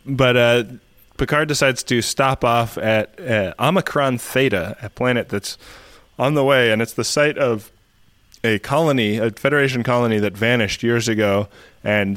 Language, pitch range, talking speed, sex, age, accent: English, 100-120 Hz, 160 wpm, male, 20-39, American